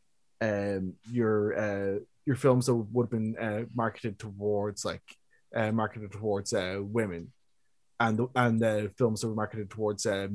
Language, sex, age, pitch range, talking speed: English, male, 20-39, 105-125 Hz, 160 wpm